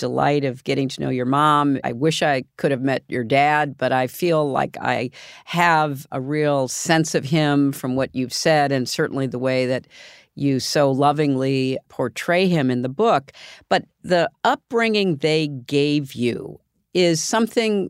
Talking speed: 170 wpm